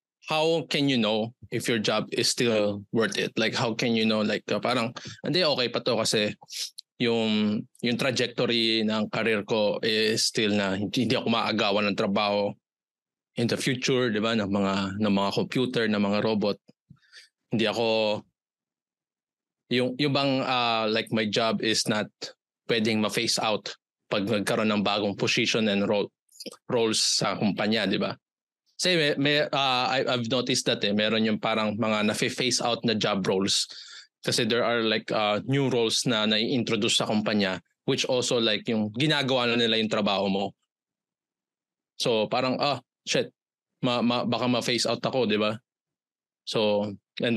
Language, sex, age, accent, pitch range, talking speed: Filipino, male, 20-39, native, 105-125 Hz, 165 wpm